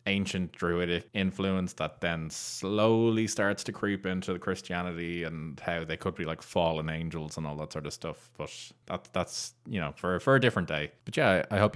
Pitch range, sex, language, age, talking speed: 85-100 Hz, male, English, 20-39, 205 wpm